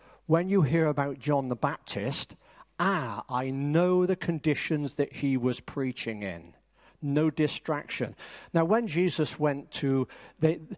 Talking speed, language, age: 140 wpm, English, 50-69